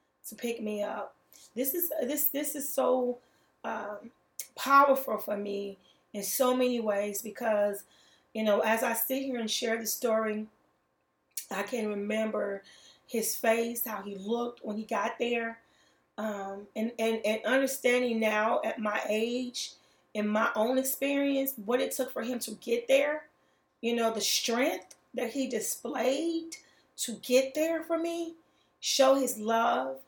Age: 30-49